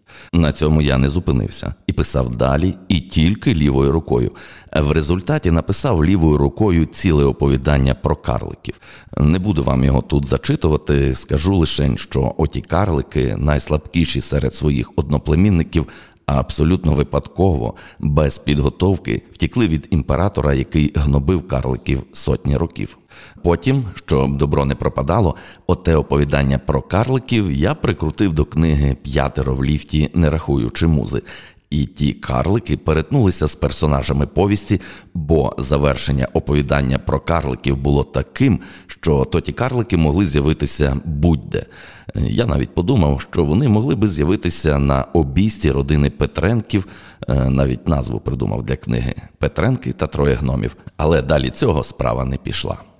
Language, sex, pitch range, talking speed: Ukrainian, male, 70-90 Hz, 130 wpm